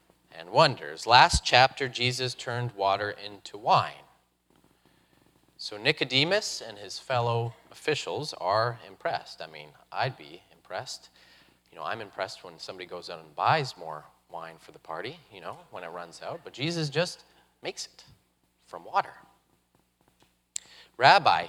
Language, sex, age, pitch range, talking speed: English, male, 30-49, 100-130 Hz, 140 wpm